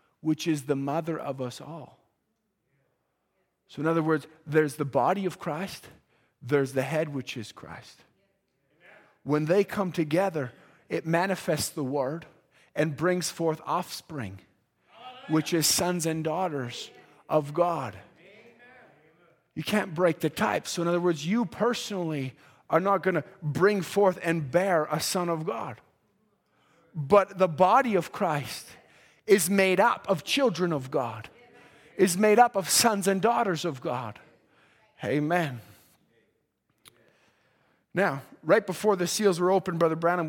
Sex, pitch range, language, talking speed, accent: male, 150-190 Hz, English, 140 wpm, American